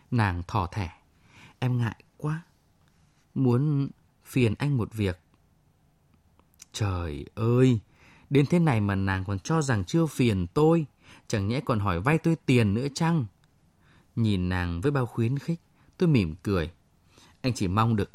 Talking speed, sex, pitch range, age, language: 150 wpm, male, 95-150 Hz, 20-39, Vietnamese